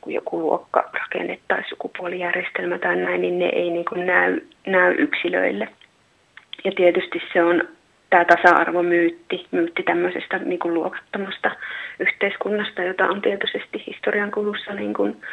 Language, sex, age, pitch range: Finnish, female, 30-49, 175-200 Hz